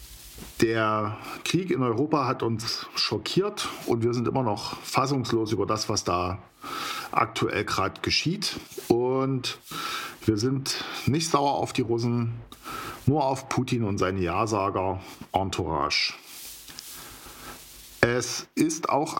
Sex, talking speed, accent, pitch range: male, 115 wpm, German, 100-125 Hz